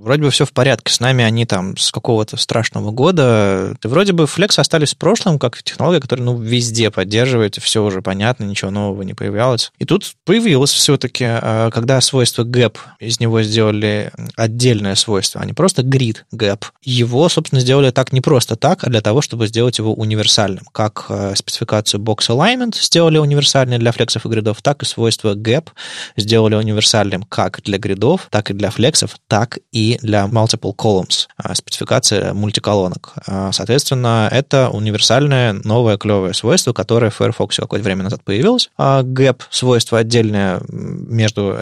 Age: 20-39